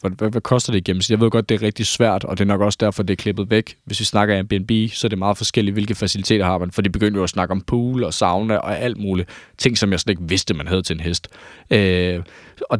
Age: 20-39